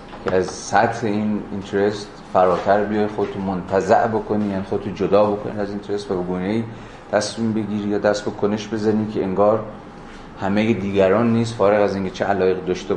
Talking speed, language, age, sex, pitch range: 160 wpm, Persian, 30-49, male, 95-115 Hz